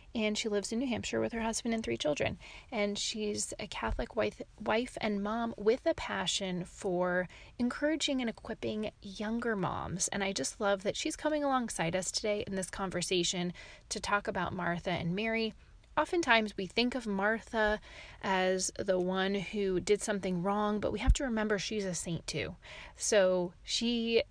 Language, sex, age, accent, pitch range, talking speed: English, female, 30-49, American, 180-225 Hz, 175 wpm